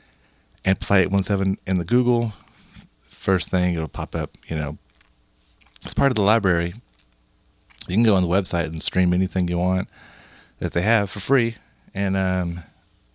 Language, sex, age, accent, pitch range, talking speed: English, male, 40-59, American, 85-105 Hz, 175 wpm